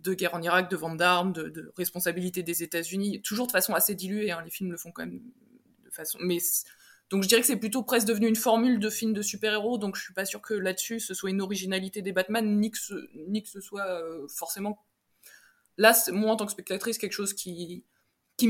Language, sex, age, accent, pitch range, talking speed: French, female, 20-39, French, 180-225 Hz, 245 wpm